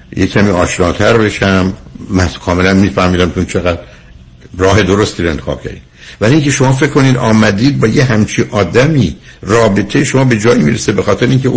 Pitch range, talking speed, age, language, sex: 90-130 Hz, 160 wpm, 60-79, Persian, male